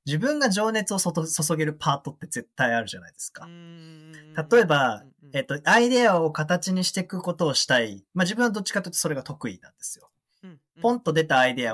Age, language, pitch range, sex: 20-39, Japanese, 145-210 Hz, male